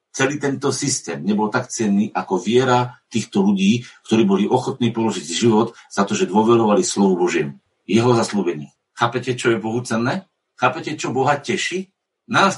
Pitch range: 115-145 Hz